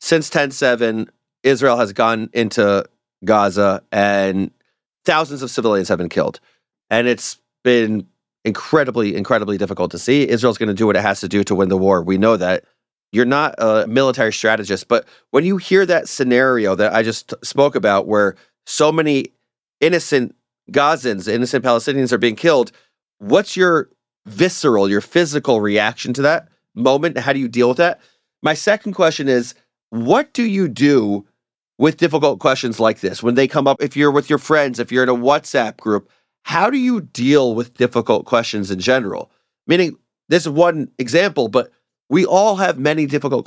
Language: English